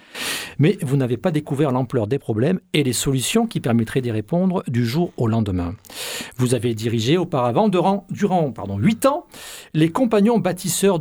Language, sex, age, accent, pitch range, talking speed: French, male, 50-69, French, 130-180 Hz, 165 wpm